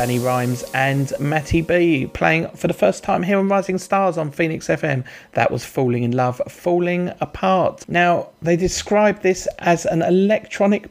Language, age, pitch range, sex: English, 40-59, 125-170 Hz, male